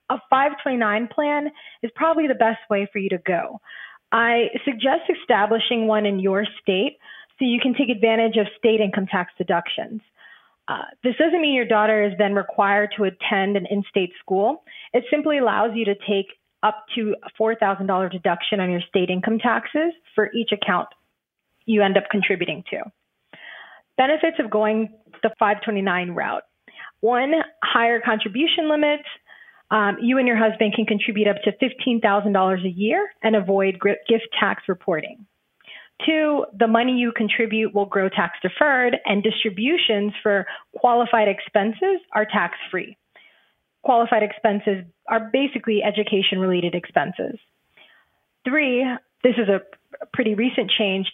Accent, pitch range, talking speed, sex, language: American, 200-250 Hz, 145 wpm, female, English